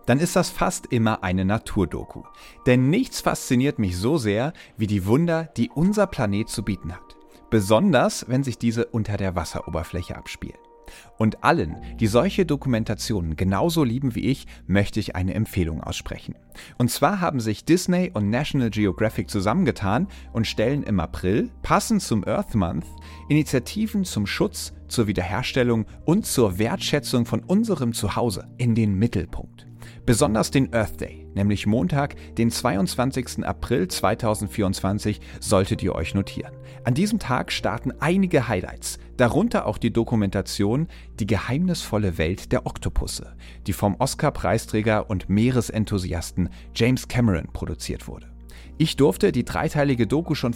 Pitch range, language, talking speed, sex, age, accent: 95-130 Hz, German, 140 wpm, male, 40-59, German